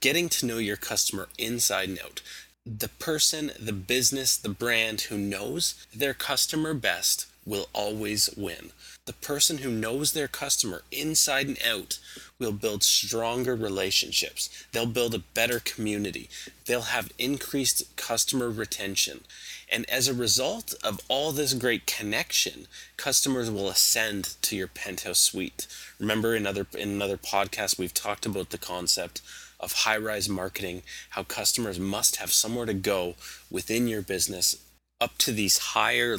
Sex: male